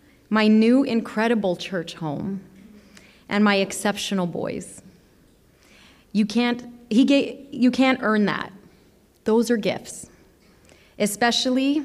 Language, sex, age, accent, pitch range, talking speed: English, female, 30-49, American, 185-240 Hz, 105 wpm